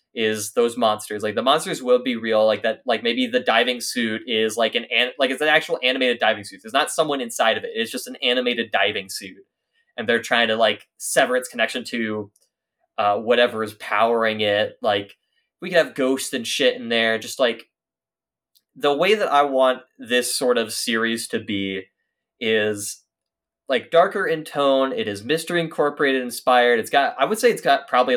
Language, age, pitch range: English, 20-39, 115-155 Hz